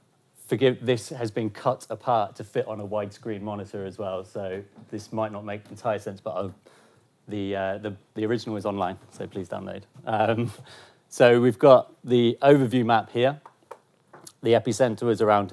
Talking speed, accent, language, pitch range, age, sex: 170 wpm, British, English, 105-125 Hz, 30-49, male